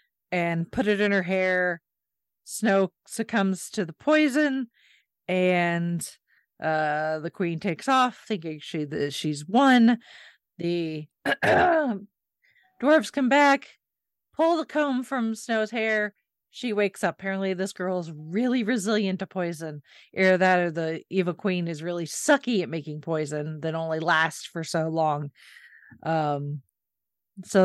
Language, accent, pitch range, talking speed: English, American, 165-220 Hz, 130 wpm